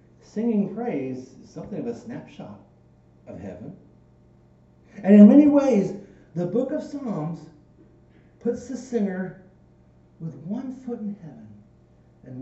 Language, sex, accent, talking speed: English, male, American, 125 wpm